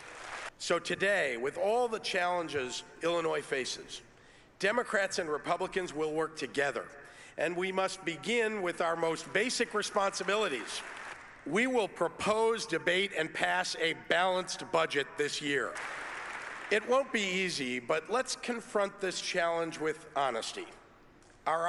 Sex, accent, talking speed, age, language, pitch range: male, American, 125 wpm, 50-69, English, 155-200 Hz